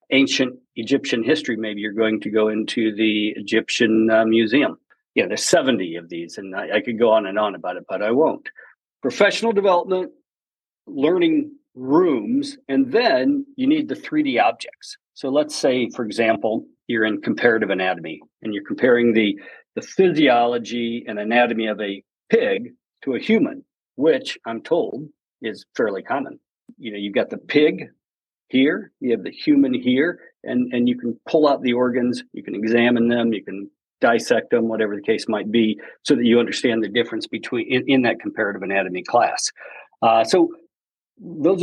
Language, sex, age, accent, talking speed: English, male, 50-69, American, 175 wpm